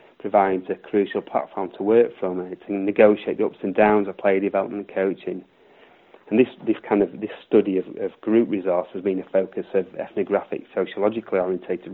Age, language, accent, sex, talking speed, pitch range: 30-49, English, British, male, 195 wpm, 95-105 Hz